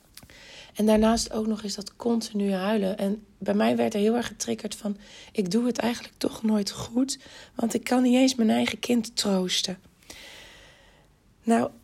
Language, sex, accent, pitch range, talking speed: Dutch, female, Dutch, 205-235 Hz, 170 wpm